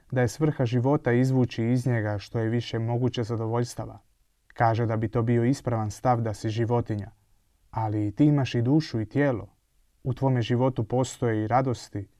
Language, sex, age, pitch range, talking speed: Croatian, male, 30-49, 110-125 Hz, 170 wpm